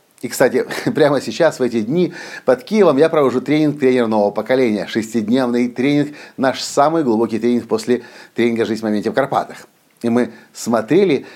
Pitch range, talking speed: 115-160 Hz, 165 wpm